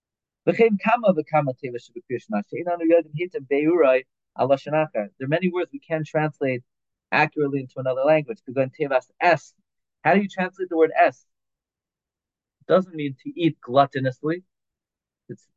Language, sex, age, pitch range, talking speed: English, male, 40-59, 125-170 Hz, 105 wpm